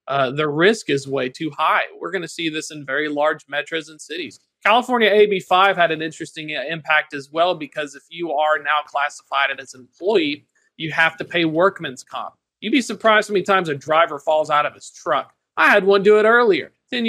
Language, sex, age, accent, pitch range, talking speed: English, male, 30-49, American, 150-190 Hz, 215 wpm